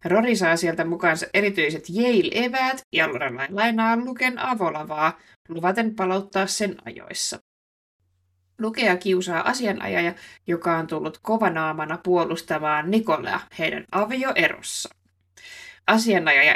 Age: 20-39